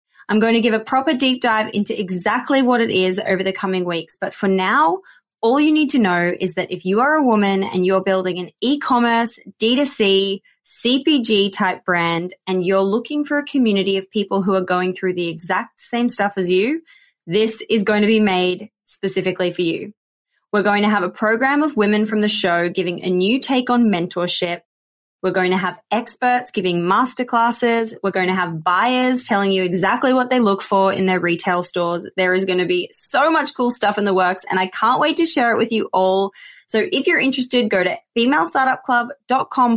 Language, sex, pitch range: English, female, 185-245 Hz